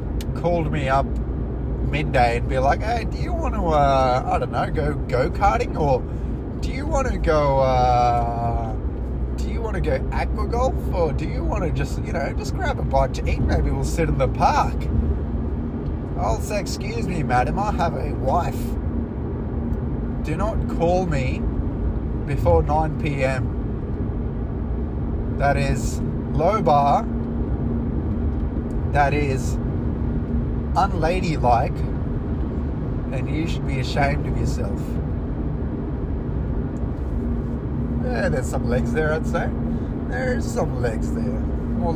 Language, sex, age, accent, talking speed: English, male, 20-39, Australian, 135 wpm